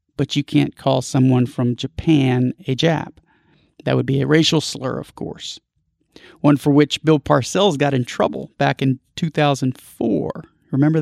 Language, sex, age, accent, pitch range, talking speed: English, male, 40-59, American, 130-155 Hz, 160 wpm